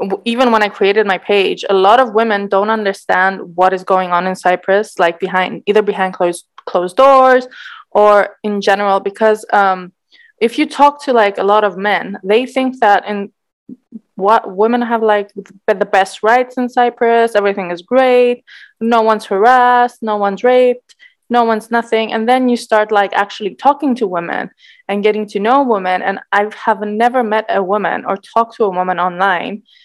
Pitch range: 195-235 Hz